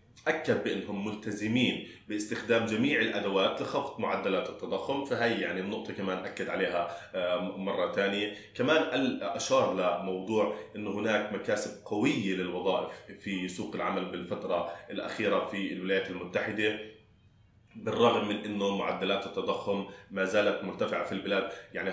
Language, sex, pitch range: Arabic, male, 95-105 Hz